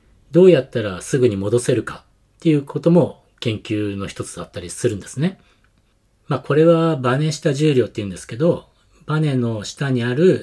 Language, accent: Japanese, native